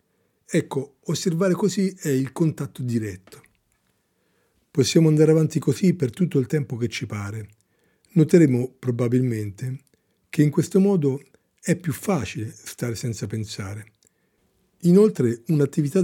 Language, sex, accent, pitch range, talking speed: Italian, male, native, 115-165 Hz, 120 wpm